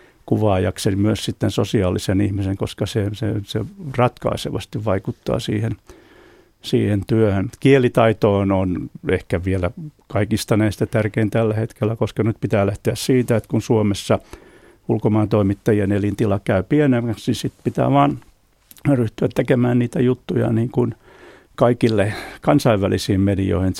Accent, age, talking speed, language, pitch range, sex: native, 60-79, 125 wpm, Finnish, 100-115 Hz, male